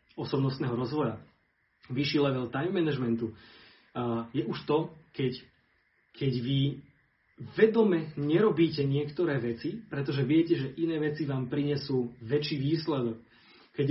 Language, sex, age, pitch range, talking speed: Slovak, male, 30-49, 120-150 Hz, 115 wpm